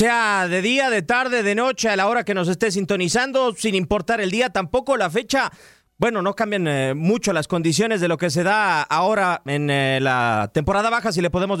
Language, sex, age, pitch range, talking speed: Spanish, male, 30-49, 175-235 Hz, 215 wpm